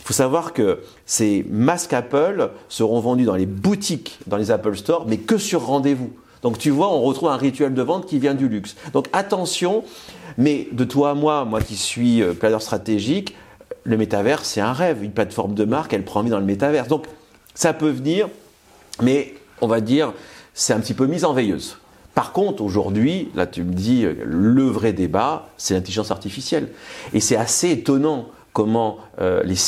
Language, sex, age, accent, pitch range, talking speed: French, male, 40-59, French, 110-160 Hz, 190 wpm